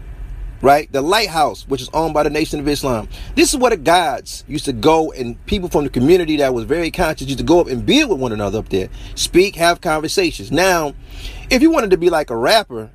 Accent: American